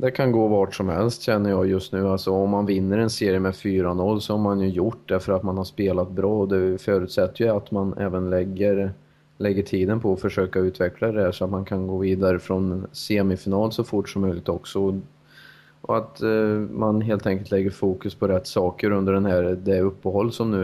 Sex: male